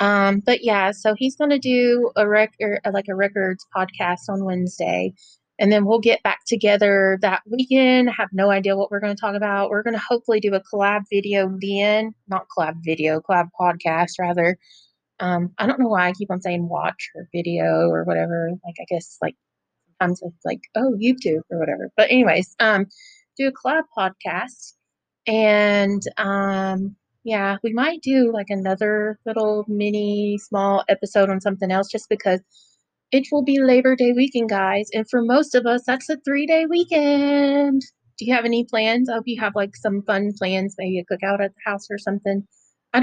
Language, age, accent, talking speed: English, 30-49, American, 190 wpm